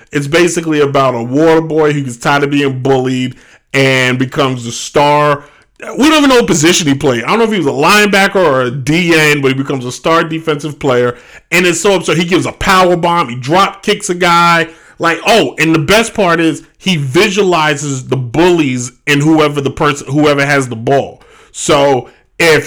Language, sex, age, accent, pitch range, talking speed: English, male, 30-49, American, 125-160 Hz, 205 wpm